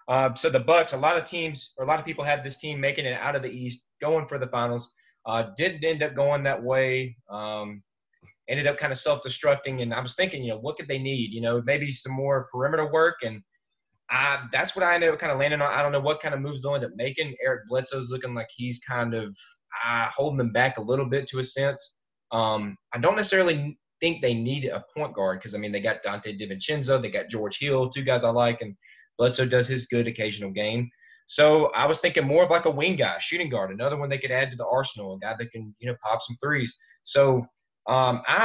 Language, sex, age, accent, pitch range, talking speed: English, male, 20-39, American, 120-150 Hz, 245 wpm